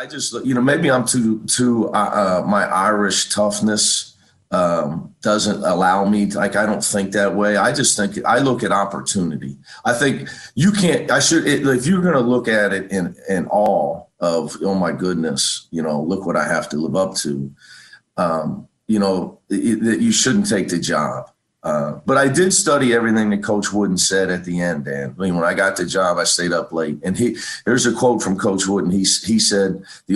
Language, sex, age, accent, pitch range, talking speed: English, male, 40-59, American, 95-120 Hz, 215 wpm